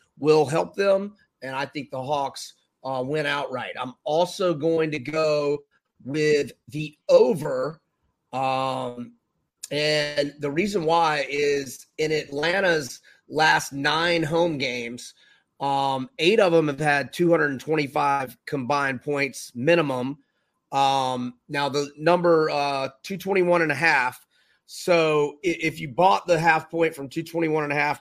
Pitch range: 130-155 Hz